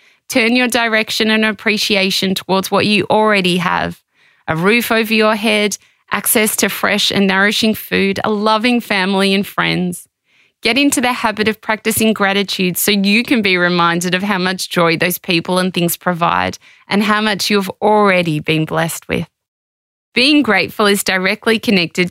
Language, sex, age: English, female, 20-39